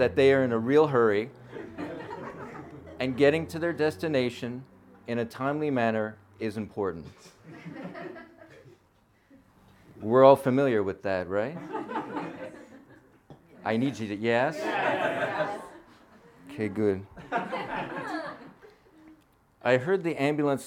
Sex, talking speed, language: male, 100 wpm, English